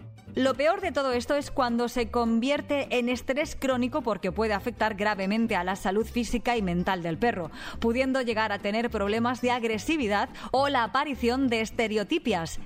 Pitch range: 205-260 Hz